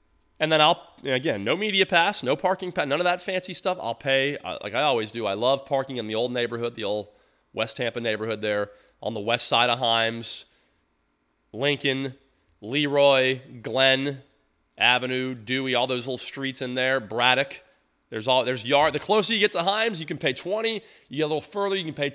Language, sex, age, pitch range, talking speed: English, male, 30-49, 110-155 Hz, 200 wpm